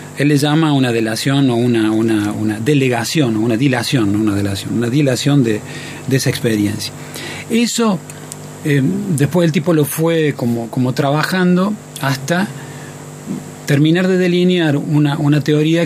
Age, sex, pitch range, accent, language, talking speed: 30-49, male, 125-155 Hz, Argentinian, Spanish, 140 wpm